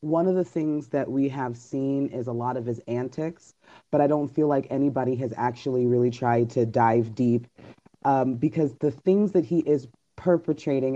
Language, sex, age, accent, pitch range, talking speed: English, female, 30-49, American, 130-160 Hz, 190 wpm